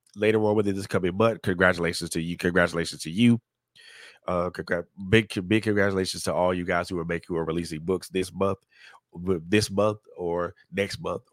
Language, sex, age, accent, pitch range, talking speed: English, male, 30-49, American, 95-120 Hz, 175 wpm